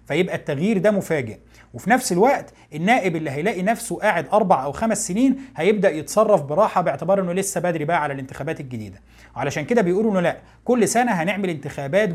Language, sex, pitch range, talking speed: Arabic, male, 150-220 Hz, 180 wpm